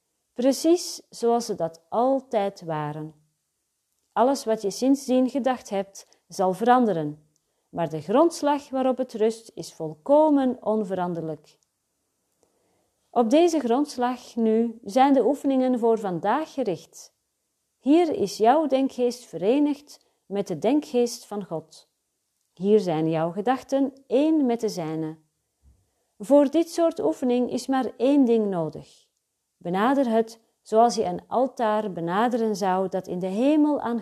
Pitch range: 185-260 Hz